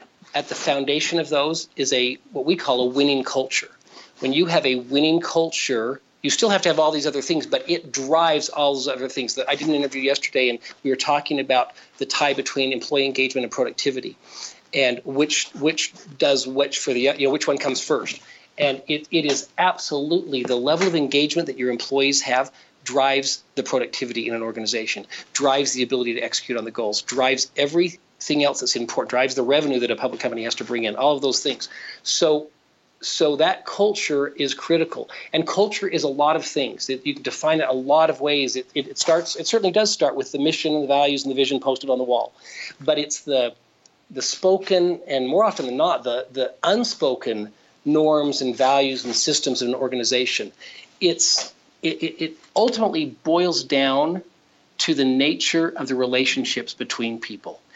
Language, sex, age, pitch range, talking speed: English, male, 40-59, 130-155 Hz, 200 wpm